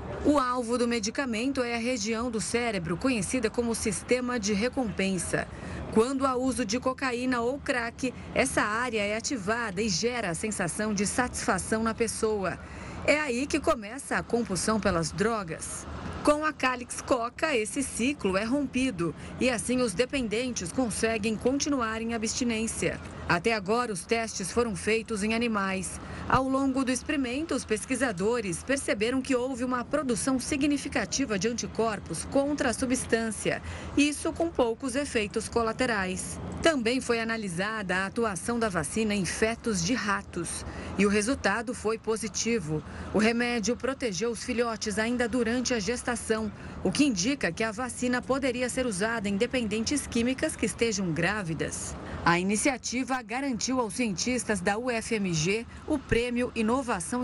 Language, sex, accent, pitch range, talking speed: Portuguese, female, Brazilian, 220-255 Hz, 145 wpm